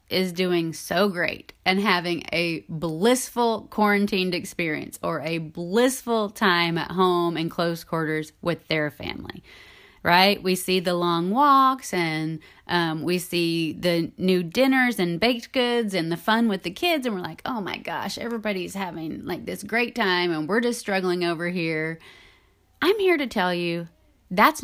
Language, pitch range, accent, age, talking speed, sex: English, 170-225 Hz, American, 30-49, 165 wpm, female